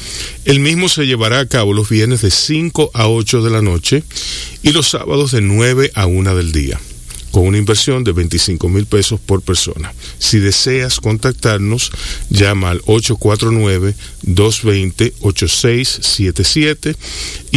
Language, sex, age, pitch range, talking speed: Spanish, male, 40-59, 80-110 Hz, 135 wpm